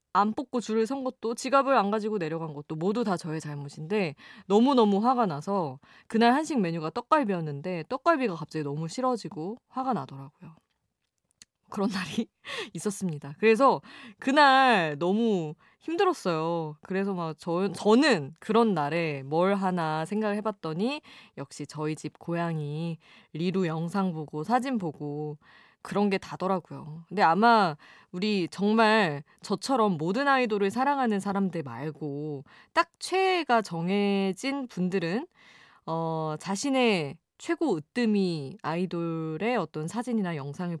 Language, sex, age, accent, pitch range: Korean, female, 20-39, native, 160-230 Hz